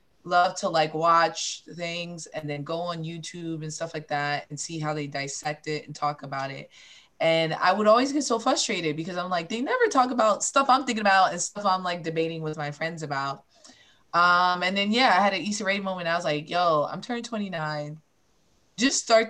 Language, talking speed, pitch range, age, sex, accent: English, 220 wpm, 150-185 Hz, 20-39, female, American